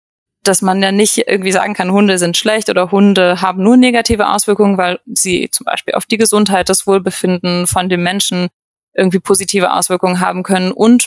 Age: 20-39